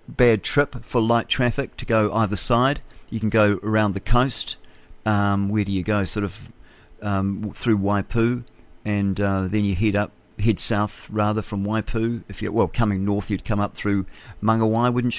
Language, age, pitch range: English, 50-69, 100-125 Hz